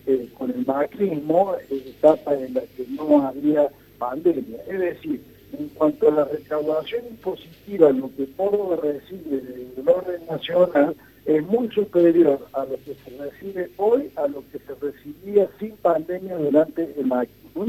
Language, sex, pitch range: Spanish, male, 145-190 Hz